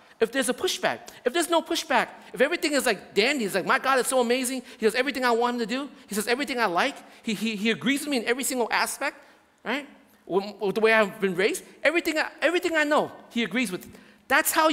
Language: English